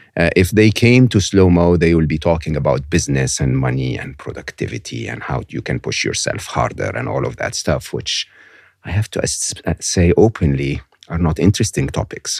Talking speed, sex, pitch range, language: 185 wpm, male, 85-100 Hz, English